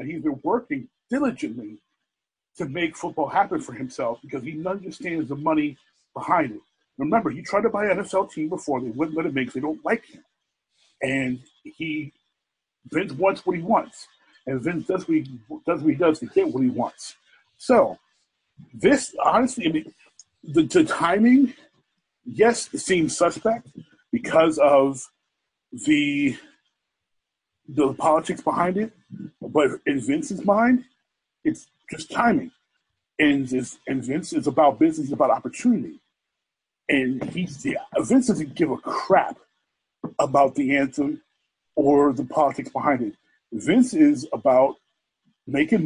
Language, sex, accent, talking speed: English, male, American, 145 wpm